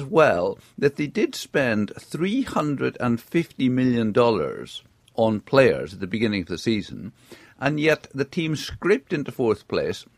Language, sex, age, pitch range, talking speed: English, male, 50-69, 110-150 Hz, 135 wpm